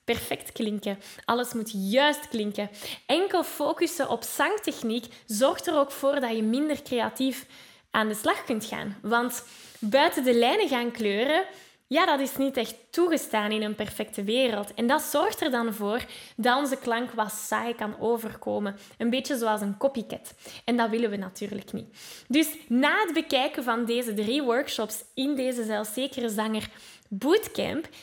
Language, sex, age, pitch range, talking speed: Dutch, female, 10-29, 225-285 Hz, 160 wpm